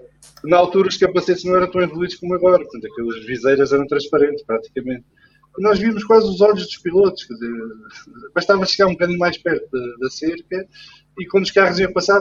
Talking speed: 195 wpm